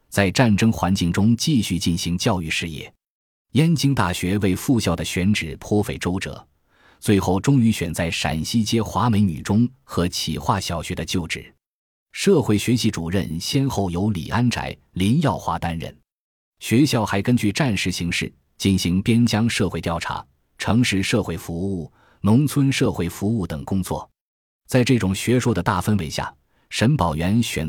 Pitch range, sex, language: 90-120 Hz, male, Chinese